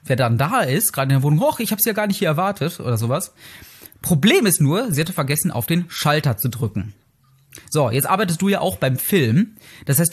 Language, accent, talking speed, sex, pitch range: German, German, 230 wpm, male, 135-195 Hz